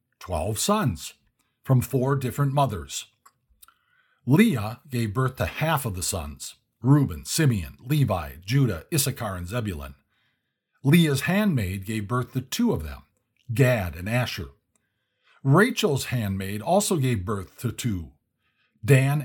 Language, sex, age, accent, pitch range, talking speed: English, male, 50-69, American, 105-140 Hz, 125 wpm